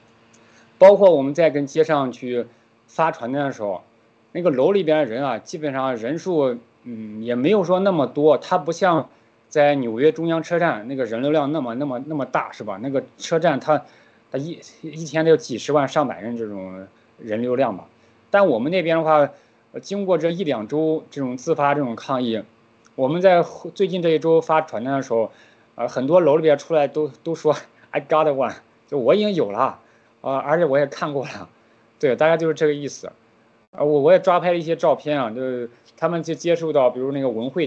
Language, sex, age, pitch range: Chinese, male, 20-39, 115-160 Hz